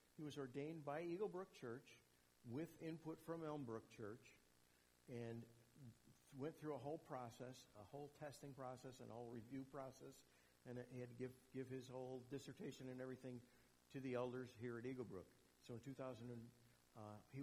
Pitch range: 115-145 Hz